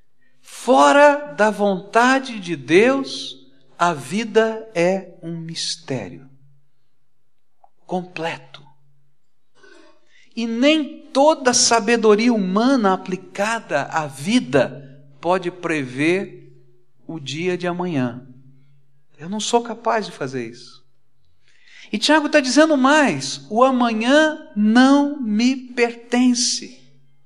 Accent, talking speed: Brazilian, 90 wpm